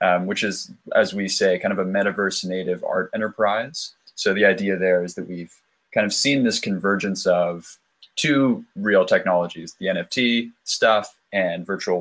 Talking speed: 170 wpm